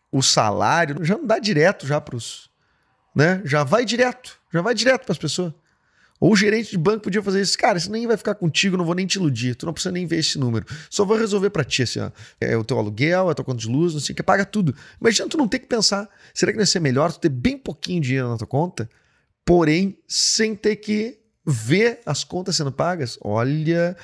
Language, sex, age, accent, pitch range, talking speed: Portuguese, male, 30-49, Brazilian, 125-190 Hz, 245 wpm